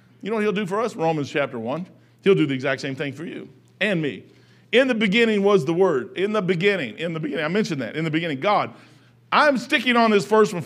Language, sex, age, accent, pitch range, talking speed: English, male, 50-69, American, 135-210 Hz, 255 wpm